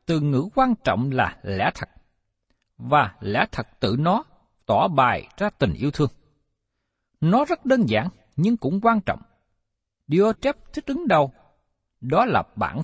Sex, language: male, Vietnamese